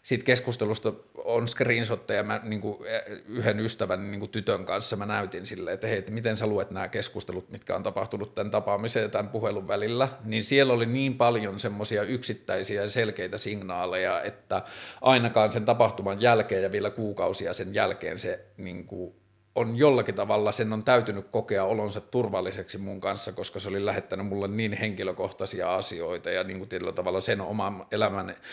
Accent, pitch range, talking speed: native, 100-125 Hz, 165 wpm